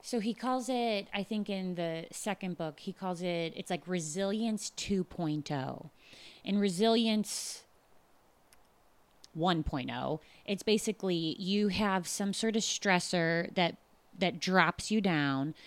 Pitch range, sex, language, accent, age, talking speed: 170-205 Hz, female, English, American, 30-49, 125 wpm